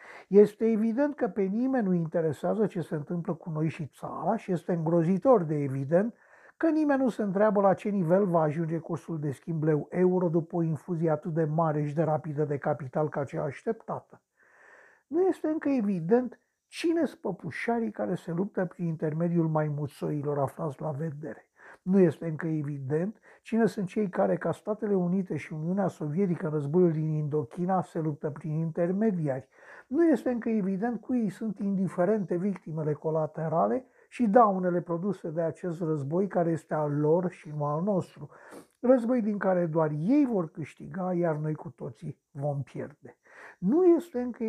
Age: 60-79